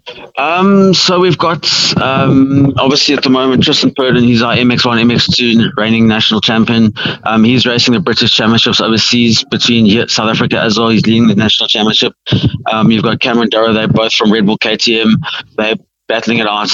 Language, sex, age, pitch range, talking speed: English, male, 20-39, 110-125 Hz, 175 wpm